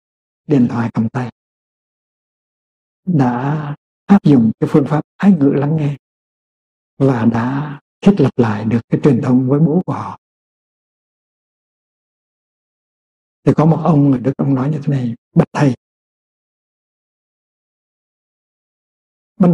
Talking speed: 125 wpm